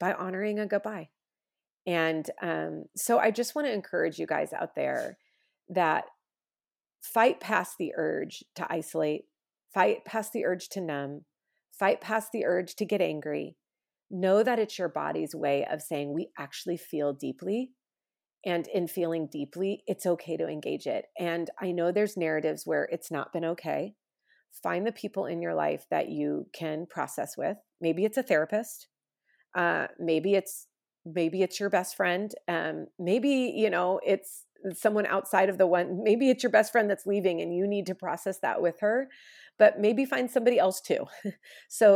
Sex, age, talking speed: female, 30-49, 175 wpm